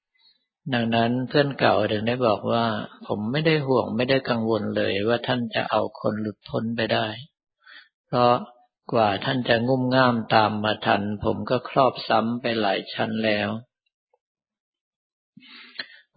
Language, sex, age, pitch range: Thai, male, 60-79, 110-125 Hz